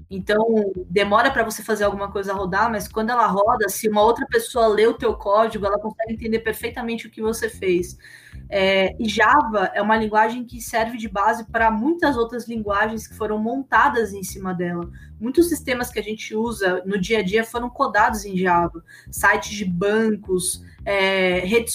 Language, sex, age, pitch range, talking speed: Portuguese, female, 20-39, 195-225 Hz, 185 wpm